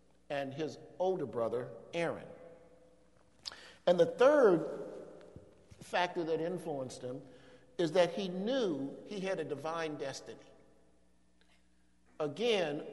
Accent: American